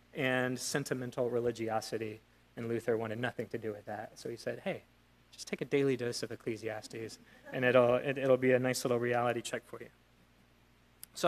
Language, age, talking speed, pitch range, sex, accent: English, 30-49, 185 wpm, 110-150 Hz, male, American